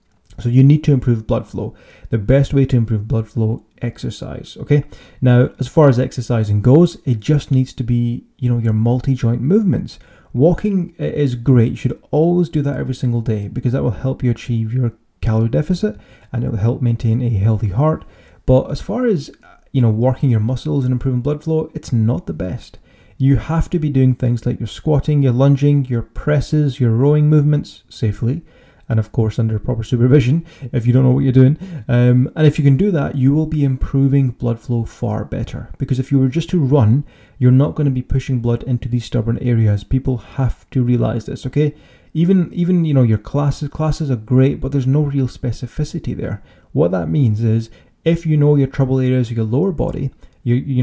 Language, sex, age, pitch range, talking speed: English, male, 30-49, 115-145 Hz, 210 wpm